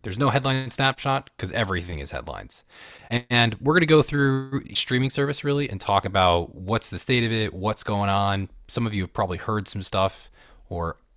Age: 20-39